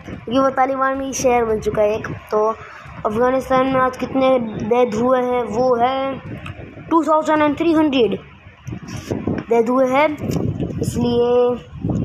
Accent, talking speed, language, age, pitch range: native, 125 wpm, Hindi, 20-39, 240-295 Hz